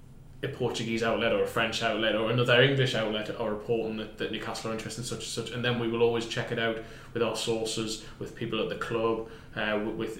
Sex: male